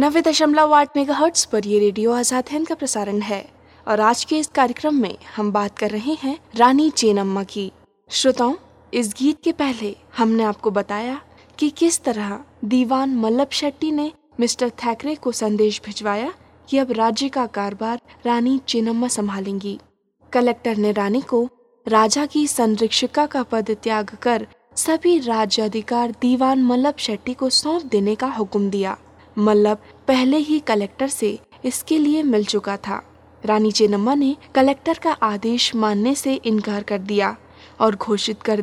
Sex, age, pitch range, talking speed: female, 20-39, 215-280 Hz, 155 wpm